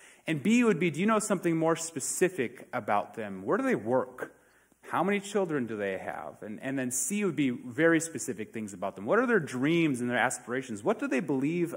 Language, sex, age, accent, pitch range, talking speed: English, male, 30-49, American, 120-170 Hz, 225 wpm